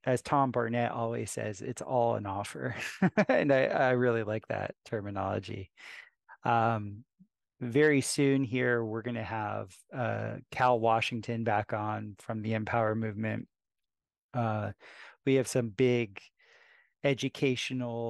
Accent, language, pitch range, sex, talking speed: American, English, 110-125 Hz, male, 130 wpm